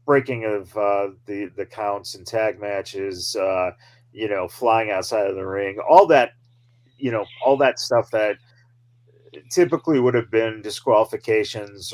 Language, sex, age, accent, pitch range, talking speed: English, male, 30-49, American, 105-125 Hz, 150 wpm